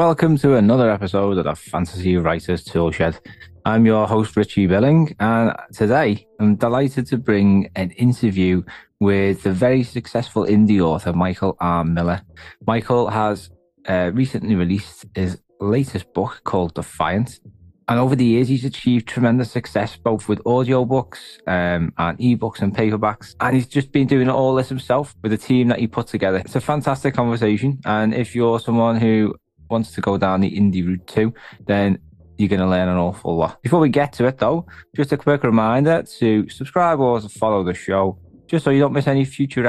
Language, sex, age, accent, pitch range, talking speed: English, male, 20-39, British, 95-125 Hz, 185 wpm